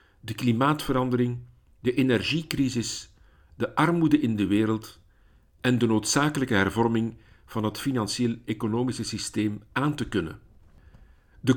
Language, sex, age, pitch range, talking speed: Dutch, male, 50-69, 100-135 Hz, 110 wpm